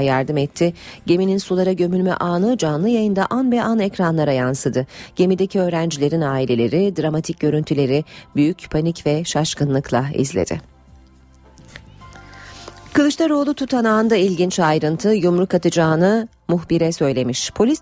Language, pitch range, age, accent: Turkish, 140-190 Hz, 40-59, native